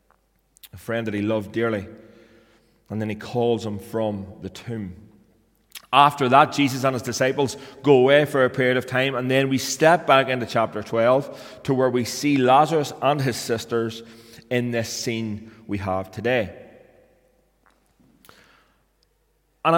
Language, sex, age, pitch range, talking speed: English, male, 30-49, 110-145 Hz, 150 wpm